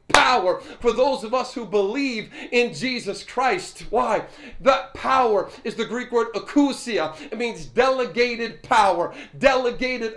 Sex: male